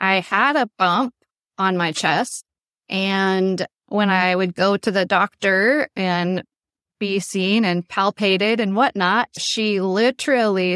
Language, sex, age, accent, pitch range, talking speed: English, female, 20-39, American, 200-255 Hz, 135 wpm